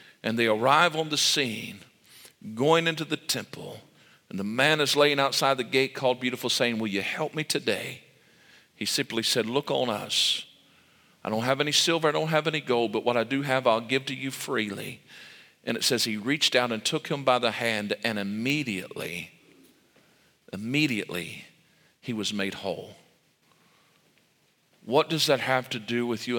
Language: English